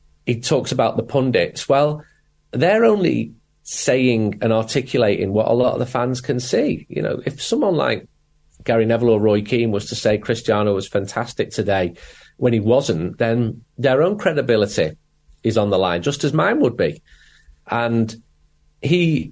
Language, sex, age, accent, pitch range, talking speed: English, male, 40-59, British, 110-140 Hz, 170 wpm